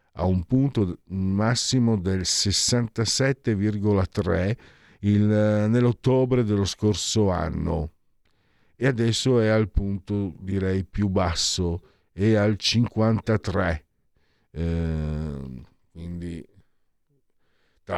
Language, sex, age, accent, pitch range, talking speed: Italian, male, 50-69, native, 85-105 Hz, 85 wpm